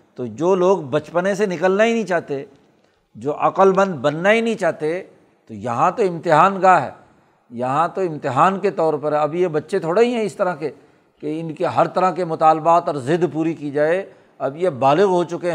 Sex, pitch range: male, 155-195 Hz